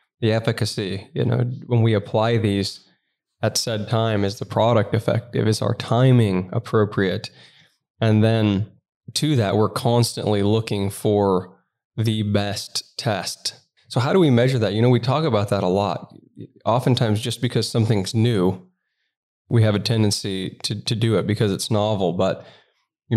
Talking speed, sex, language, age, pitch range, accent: 160 wpm, male, English, 20-39, 100-115 Hz, American